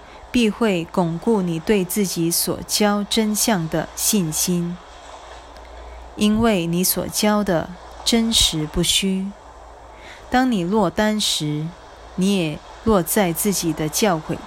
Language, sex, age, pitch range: Chinese, female, 20-39, 170-210 Hz